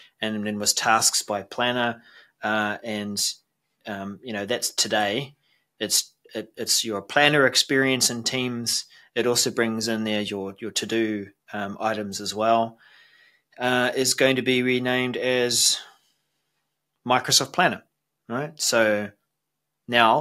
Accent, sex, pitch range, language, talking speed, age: Australian, male, 105-125 Hz, English, 135 wpm, 30-49